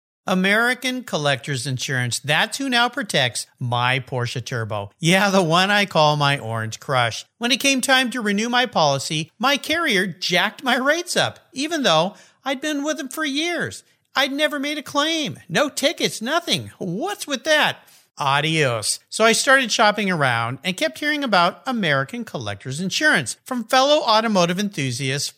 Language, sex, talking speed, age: English, male, 160 wpm, 50-69